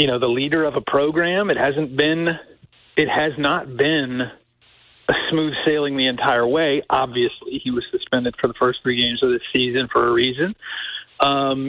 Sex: male